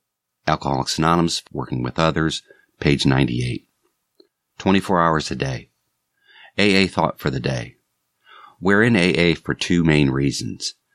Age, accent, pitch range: 50-69, American, 70-90 Hz